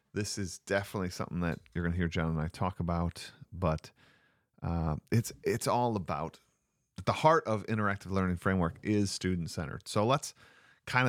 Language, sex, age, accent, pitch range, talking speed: English, male, 40-59, American, 90-120 Hz, 170 wpm